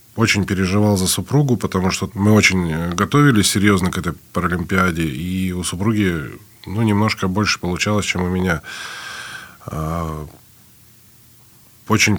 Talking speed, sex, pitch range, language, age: 120 wpm, male, 90-115 Hz, Russian, 20-39